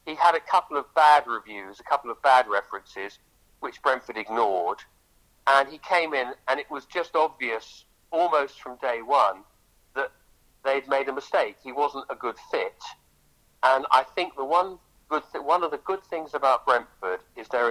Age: 50-69